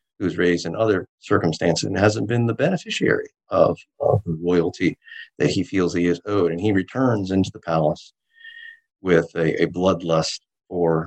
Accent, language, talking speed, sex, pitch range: American, English, 170 wpm, male, 85-125 Hz